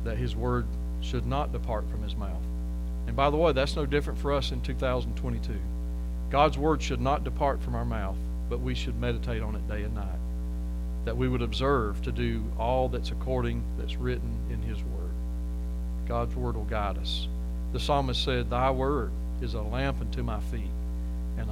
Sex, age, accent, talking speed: male, 40-59, American, 190 wpm